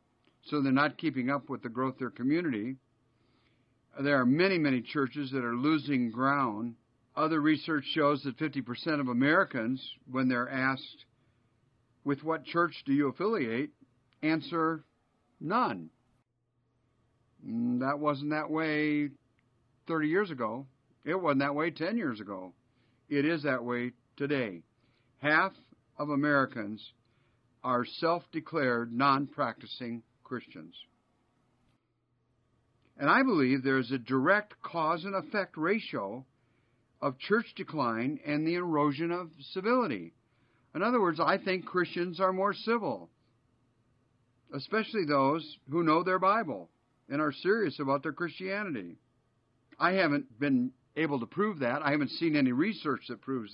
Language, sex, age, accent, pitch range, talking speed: English, male, 50-69, American, 120-160 Hz, 130 wpm